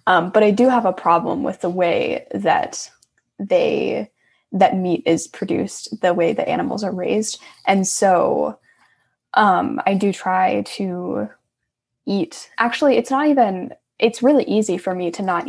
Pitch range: 180-225 Hz